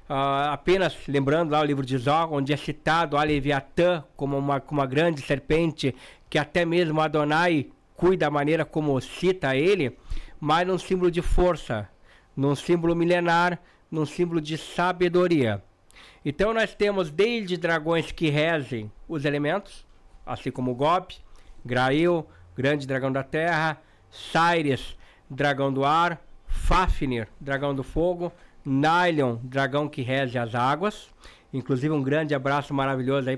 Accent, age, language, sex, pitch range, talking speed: Brazilian, 60-79, Portuguese, male, 135-165 Hz, 140 wpm